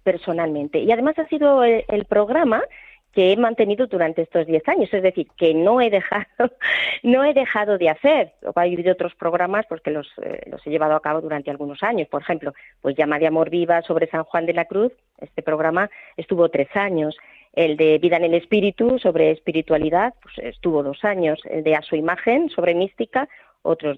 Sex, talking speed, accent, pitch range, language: female, 200 wpm, Spanish, 165-210 Hz, Spanish